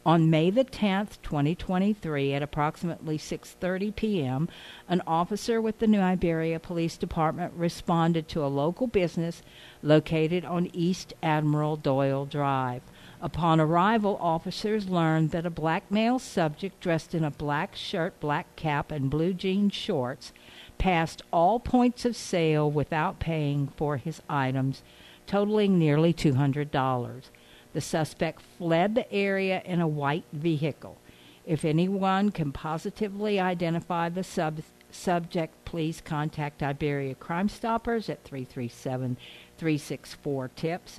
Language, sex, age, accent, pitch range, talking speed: English, female, 60-79, American, 140-185 Hz, 125 wpm